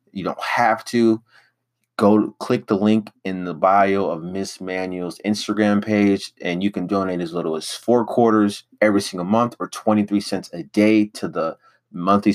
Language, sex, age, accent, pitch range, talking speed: English, male, 30-49, American, 95-110 Hz, 175 wpm